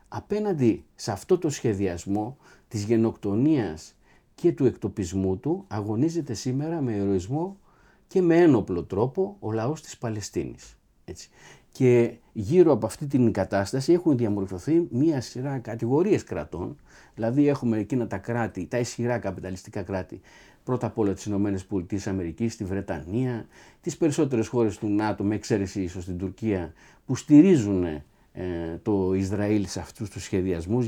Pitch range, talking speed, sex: 100-125 Hz, 140 wpm, male